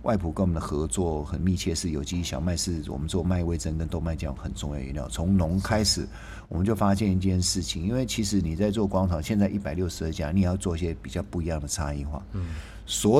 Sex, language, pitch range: male, Chinese, 85-100 Hz